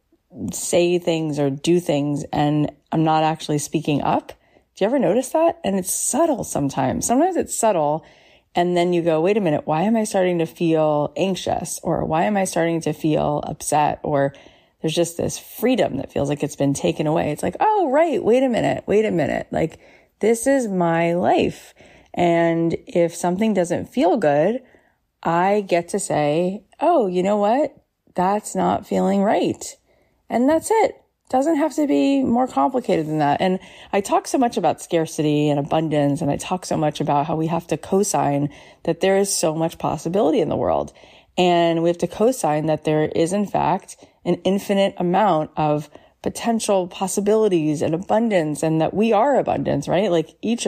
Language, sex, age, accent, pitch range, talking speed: English, female, 30-49, American, 155-210 Hz, 185 wpm